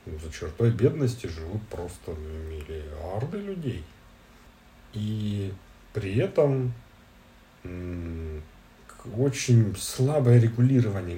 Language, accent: Russian, native